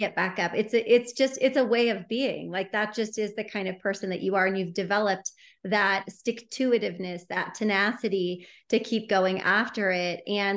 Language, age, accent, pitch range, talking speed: English, 30-49, American, 190-245 Hz, 210 wpm